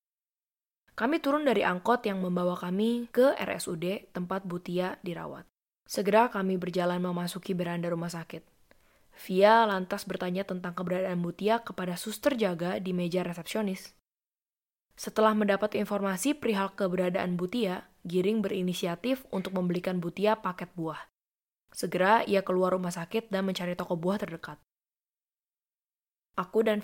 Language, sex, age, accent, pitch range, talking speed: Indonesian, female, 20-39, native, 175-205 Hz, 125 wpm